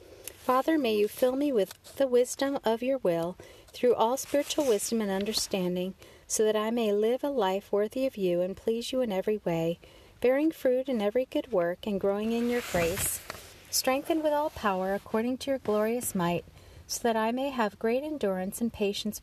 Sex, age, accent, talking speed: female, 40-59, American, 195 wpm